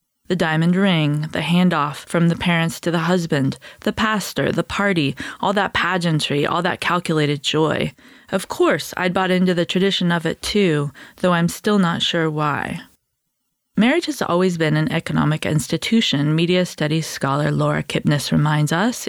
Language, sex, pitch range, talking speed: English, female, 150-195 Hz, 165 wpm